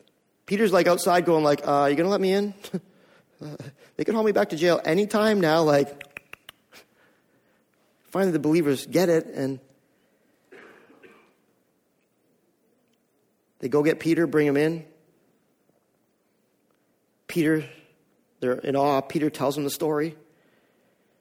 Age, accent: 40-59, American